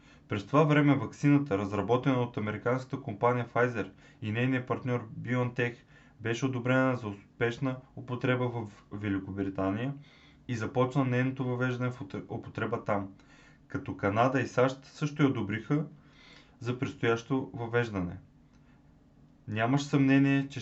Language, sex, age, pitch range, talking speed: Bulgarian, male, 20-39, 115-135 Hz, 115 wpm